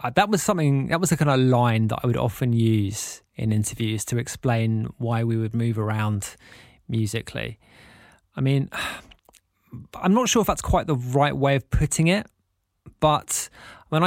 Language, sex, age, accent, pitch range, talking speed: English, male, 20-39, British, 115-145 Hz, 170 wpm